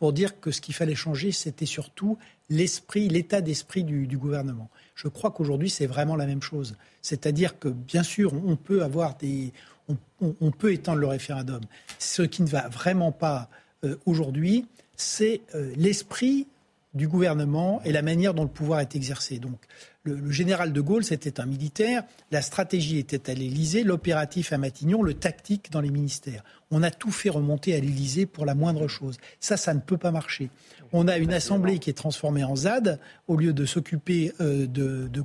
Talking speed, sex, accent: 190 wpm, male, French